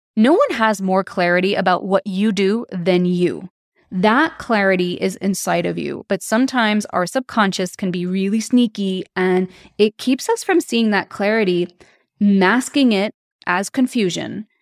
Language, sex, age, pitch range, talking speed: English, female, 20-39, 185-220 Hz, 150 wpm